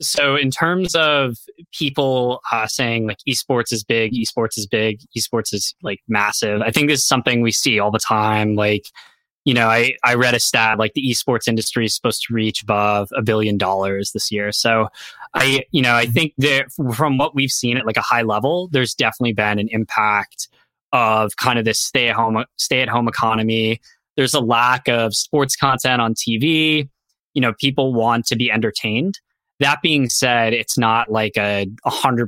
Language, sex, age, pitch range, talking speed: English, male, 20-39, 110-130 Hz, 195 wpm